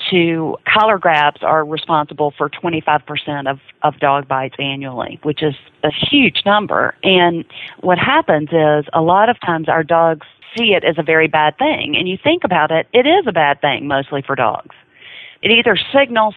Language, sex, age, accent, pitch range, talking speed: English, female, 40-59, American, 150-185 Hz, 185 wpm